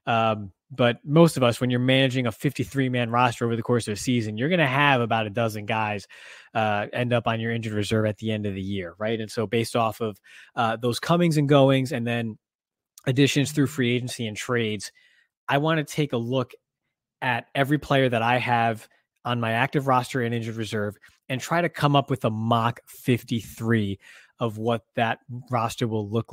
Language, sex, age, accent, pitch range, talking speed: English, male, 20-39, American, 110-130 Hz, 210 wpm